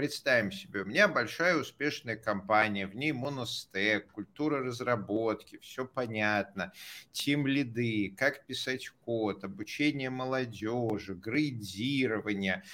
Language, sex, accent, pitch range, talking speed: Russian, male, native, 115-140 Hz, 100 wpm